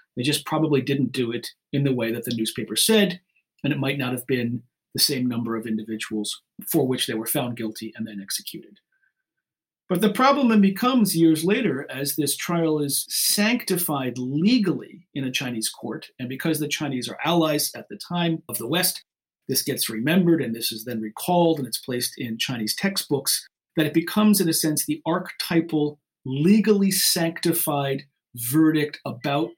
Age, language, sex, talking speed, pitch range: 40-59, English, male, 180 wpm, 125-170 Hz